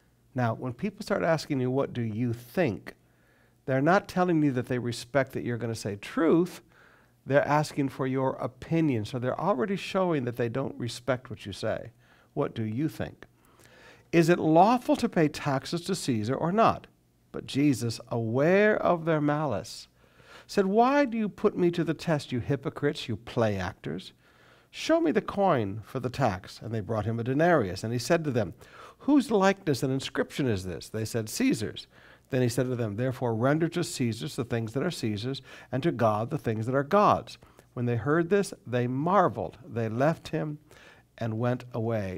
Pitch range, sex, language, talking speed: 120-165 Hz, male, English, 190 wpm